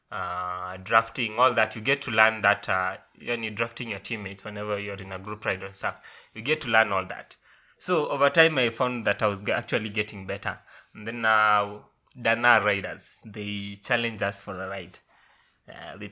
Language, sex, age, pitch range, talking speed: English, male, 20-39, 100-125 Hz, 200 wpm